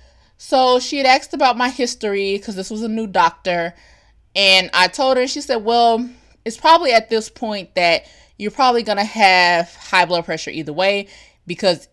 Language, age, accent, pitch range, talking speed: English, 20-39, American, 170-230 Hz, 180 wpm